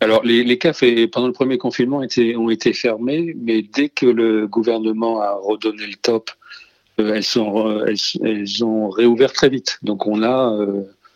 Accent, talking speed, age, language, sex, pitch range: French, 190 wpm, 40-59, French, male, 100-120 Hz